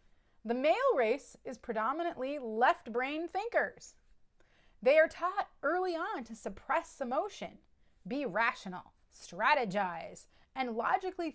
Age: 30-49